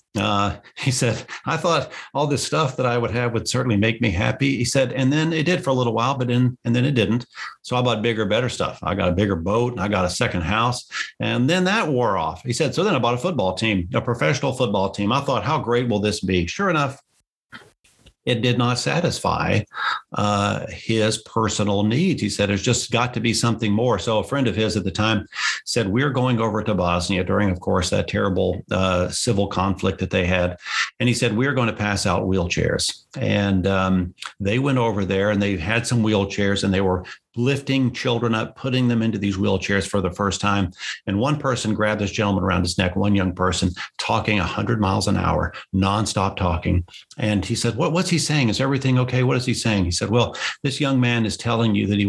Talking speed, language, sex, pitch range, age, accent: 225 wpm, English, male, 95-125 Hz, 50-69, American